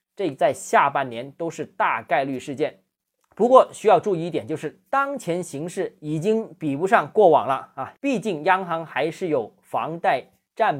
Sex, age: male, 20-39